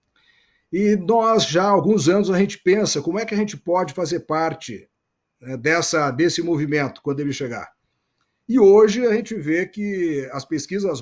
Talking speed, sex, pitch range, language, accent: 165 wpm, male, 135-180 Hz, Portuguese, Brazilian